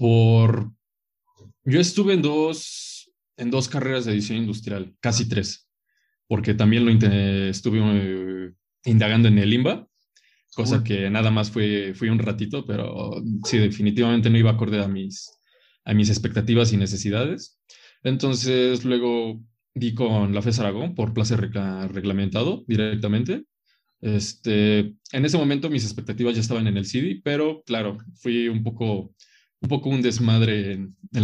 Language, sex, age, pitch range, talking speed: Spanish, male, 20-39, 105-125 Hz, 150 wpm